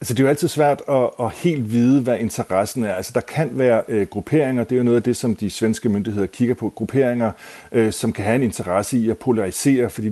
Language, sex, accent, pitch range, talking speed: Danish, male, native, 105-125 Hz, 225 wpm